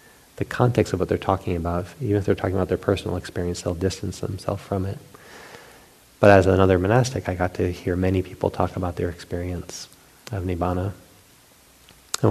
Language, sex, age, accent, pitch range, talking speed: English, male, 30-49, American, 90-105 Hz, 180 wpm